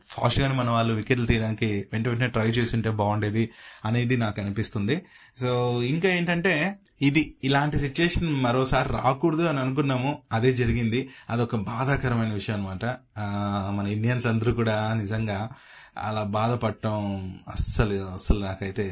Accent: native